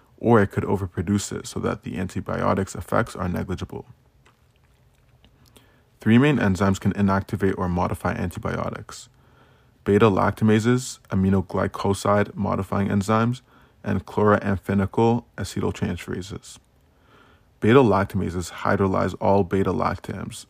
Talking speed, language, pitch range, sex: 90 wpm, English, 95-115 Hz, male